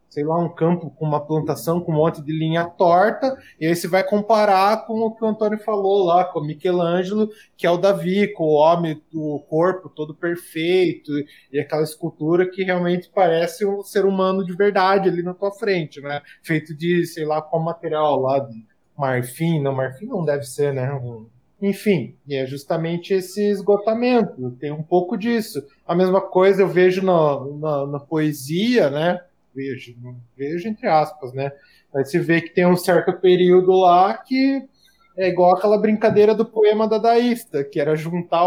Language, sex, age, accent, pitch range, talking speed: Portuguese, male, 20-39, Brazilian, 150-195 Hz, 180 wpm